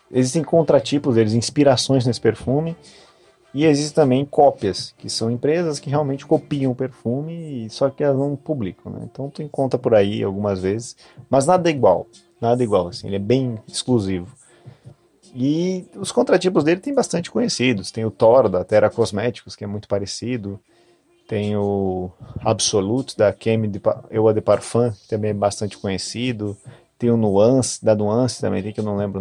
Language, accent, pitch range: Portuguese, Brazilian, 105-140 Hz